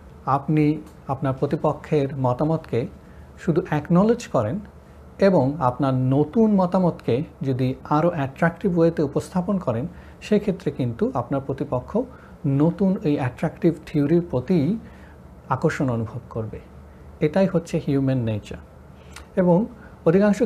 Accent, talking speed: native, 105 wpm